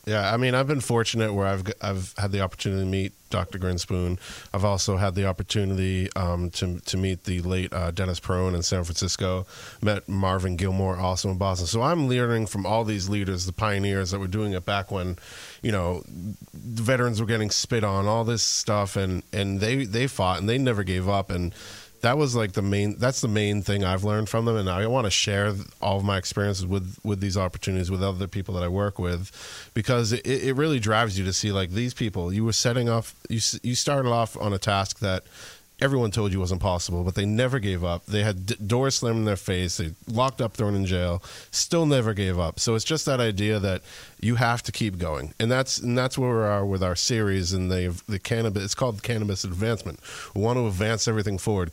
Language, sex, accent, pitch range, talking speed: English, male, American, 95-115 Hz, 225 wpm